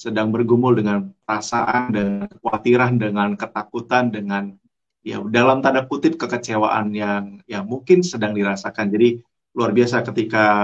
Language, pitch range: Malay, 115-135 Hz